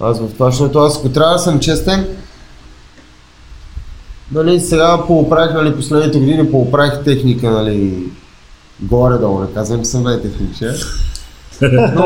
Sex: male